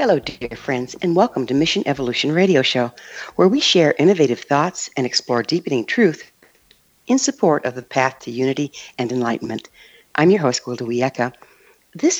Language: English